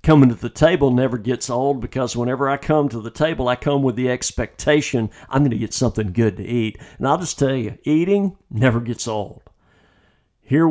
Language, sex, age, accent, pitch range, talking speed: English, male, 50-69, American, 125-170 Hz, 205 wpm